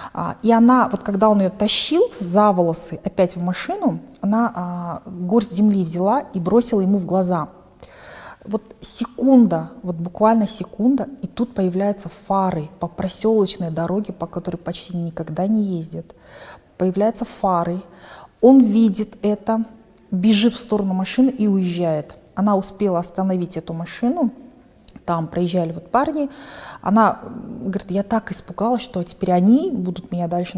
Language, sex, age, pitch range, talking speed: Russian, female, 30-49, 180-220 Hz, 140 wpm